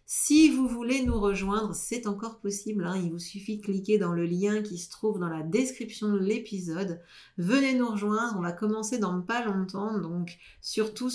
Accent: French